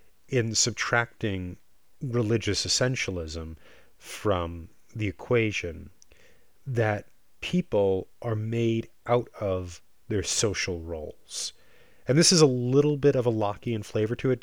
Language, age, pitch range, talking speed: English, 30-49, 90-120 Hz, 115 wpm